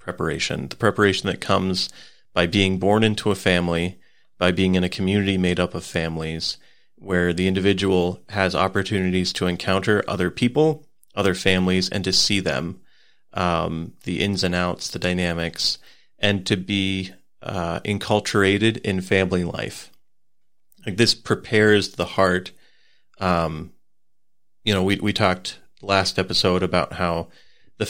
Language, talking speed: English, 140 wpm